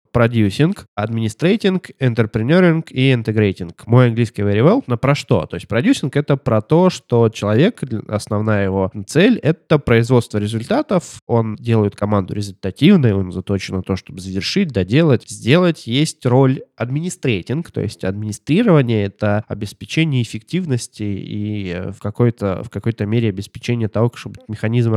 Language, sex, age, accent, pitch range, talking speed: Russian, male, 20-39, native, 105-135 Hz, 140 wpm